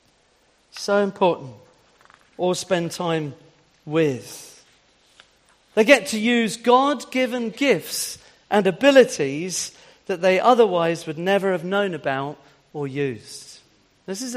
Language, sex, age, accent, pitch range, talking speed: English, male, 40-59, British, 180-245 Hz, 110 wpm